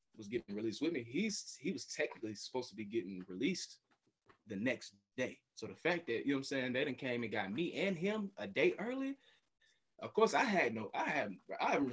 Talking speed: 230 wpm